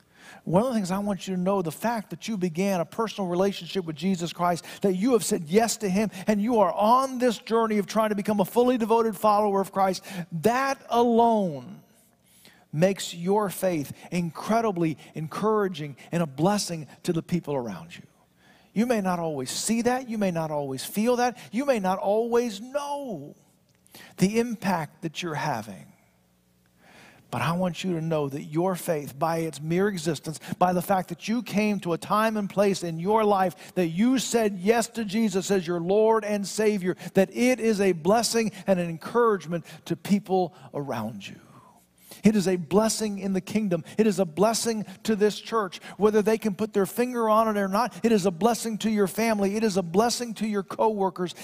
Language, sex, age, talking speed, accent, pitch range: English, male, 50-69, 195 wpm, American, 170-220 Hz